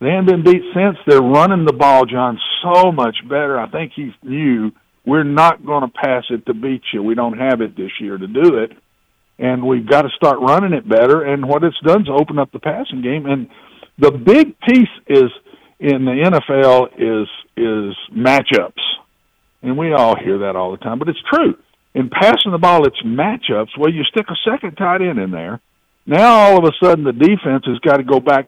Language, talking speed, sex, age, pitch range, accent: English, 215 wpm, male, 50-69, 125-165 Hz, American